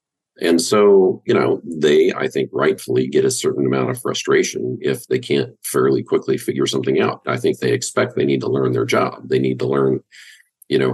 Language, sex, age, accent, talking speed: English, male, 50-69, American, 210 wpm